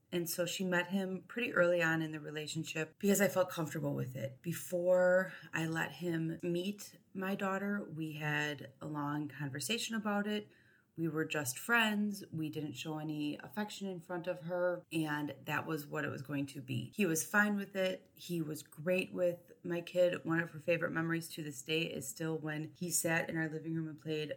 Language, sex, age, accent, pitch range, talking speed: English, female, 30-49, American, 150-185 Hz, 205 wpm